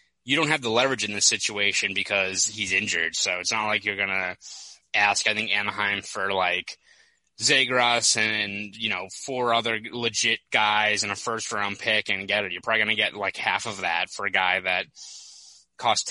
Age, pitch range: 20-39, 100-115 Hz